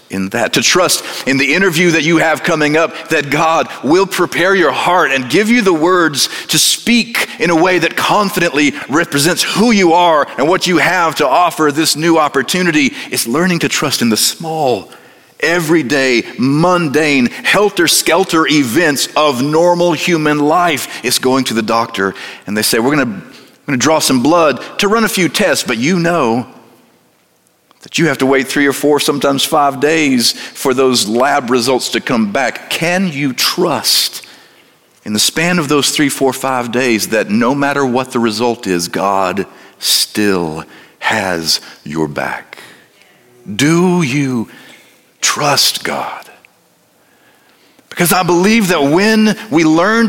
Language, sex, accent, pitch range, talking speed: English, male, American, 130-180 Hz, 160 wpm